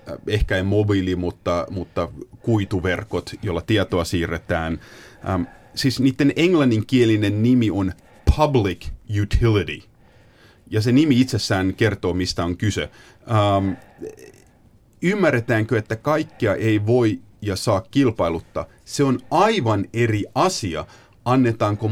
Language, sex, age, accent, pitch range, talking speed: Finnish, male, 30-49, native, 95-115 Hz, 105 wpm